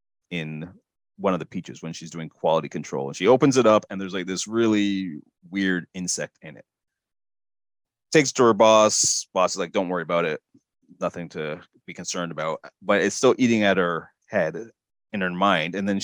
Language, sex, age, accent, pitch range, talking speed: English, male, 30-49, American, 95-115 Hz, 195 wpm